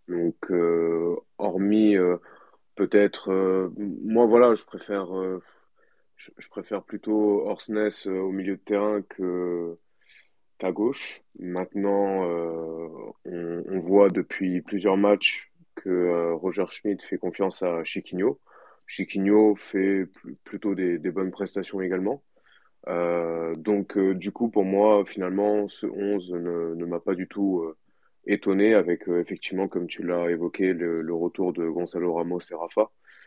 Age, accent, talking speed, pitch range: 20-39, French, 150 wpm, 85-100 Hz